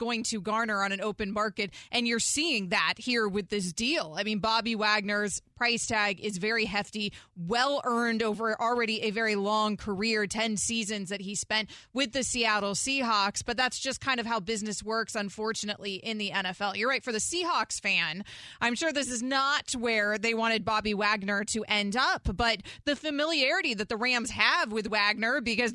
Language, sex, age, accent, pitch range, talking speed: English, female, 20-39, American, 210-265 Hz, 190 wpm